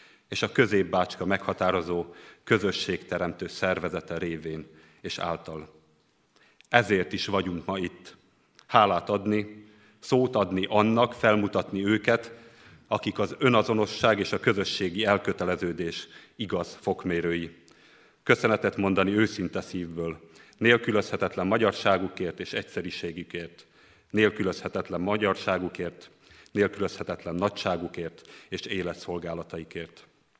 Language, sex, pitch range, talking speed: Hungarian, male, 85-105 Hz, 85 wpm